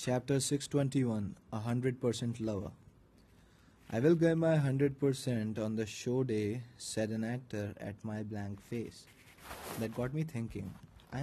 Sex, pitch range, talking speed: male, 105-120 Hz, 135 wpm